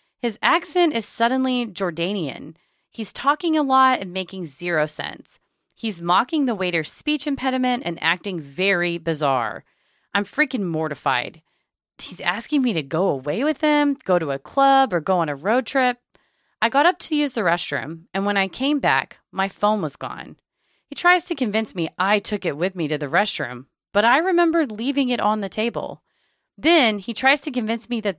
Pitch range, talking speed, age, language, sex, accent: 170-265 Hz, 185 wpm, 30-49, English, female, American